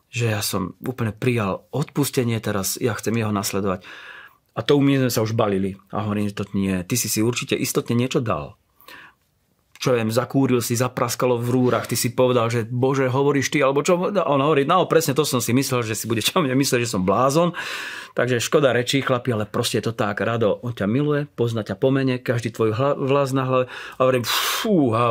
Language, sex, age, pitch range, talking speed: Slovak, male, 40-59, 110-135 Hz, 205 wpm